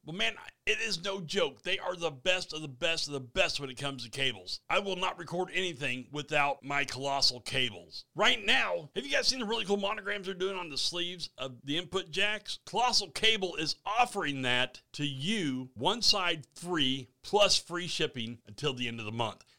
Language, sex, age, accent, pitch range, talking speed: English, male, 40-59, American, 135-195 Hz, 210 wpm